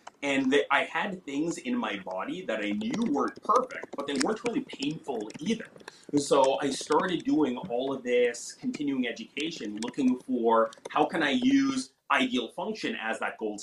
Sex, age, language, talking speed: male, 30-49, English, 165 wpm